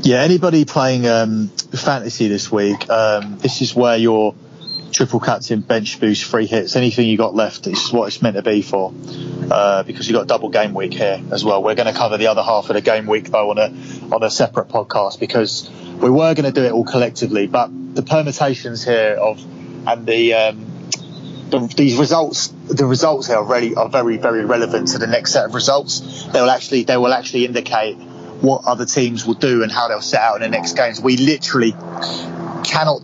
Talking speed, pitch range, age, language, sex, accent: 215 wpm, 110-135 Hz, 30-49, English, male, British